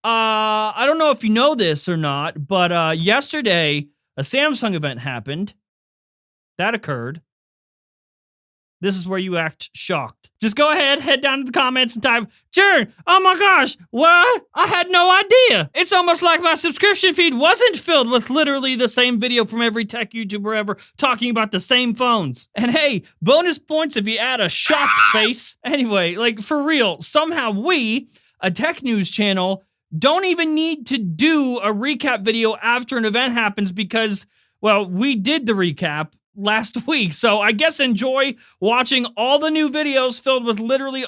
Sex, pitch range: male, 210-280 Hz